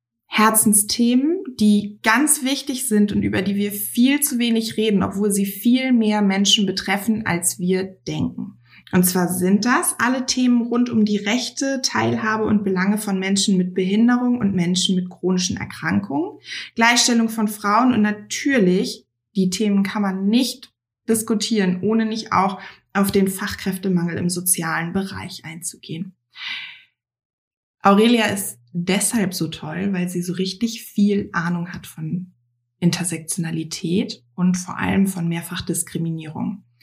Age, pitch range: 20-39, 185-225 Hz